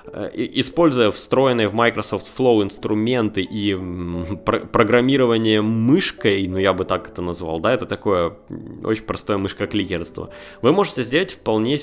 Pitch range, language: 95-115 Hz, Russian